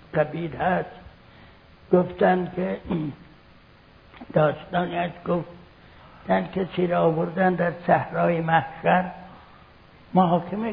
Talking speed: 75 wpm